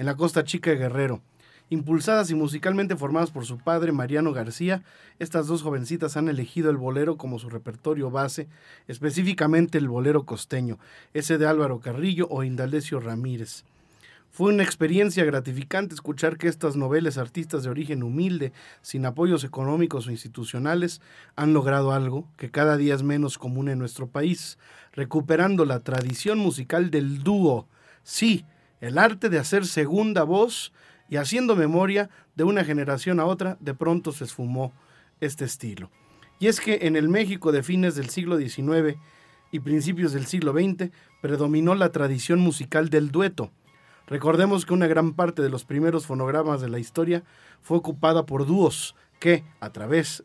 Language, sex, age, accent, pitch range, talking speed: Spanish, male, 40-59, Mexican, 135-170 Hz, 160 wpm